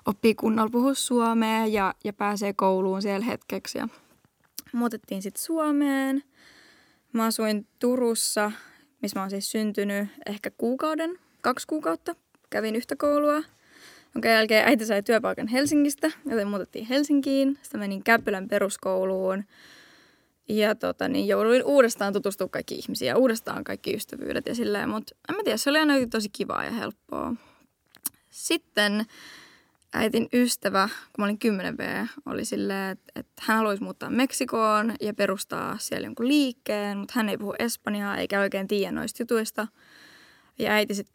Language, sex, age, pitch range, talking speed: Finnish, female, 10-29, 205-265 Hz, 145 wpm